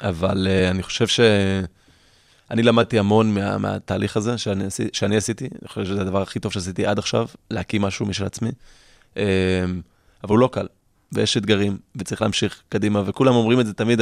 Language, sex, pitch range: Hebrew, male, 95-110 Hz